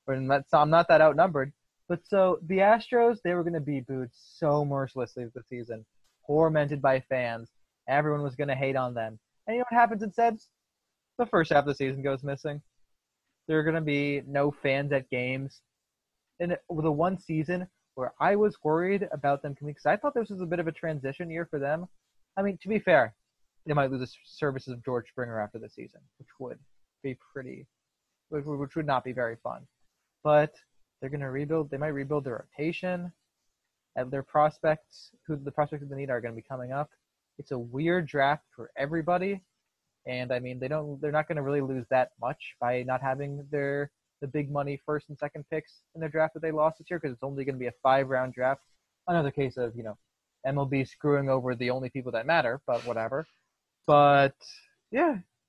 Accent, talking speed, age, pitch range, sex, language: American, 210 wpm, 20-39, 130-165 Hz, male, English